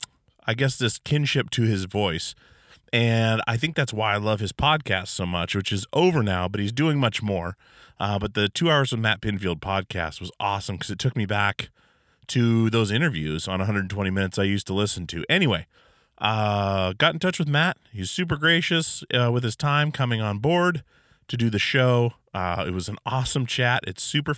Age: 30-49